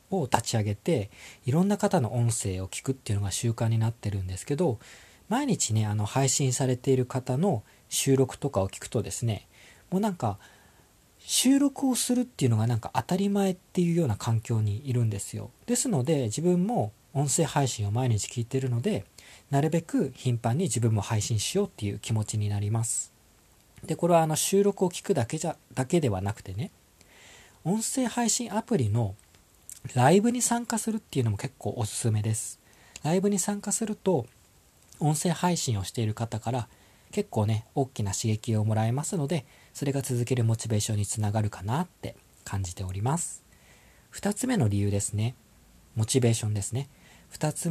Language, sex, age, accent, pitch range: Japanese, male, 40-59, native, 105-170 Hz